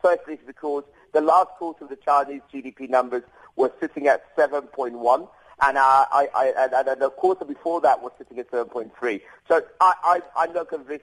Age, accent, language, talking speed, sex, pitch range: 50-69, British, English, 150 wpm, male, 130-165 Hz